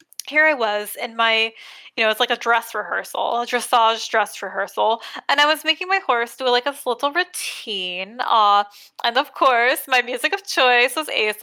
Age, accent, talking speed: 20-39, American, 195 wpm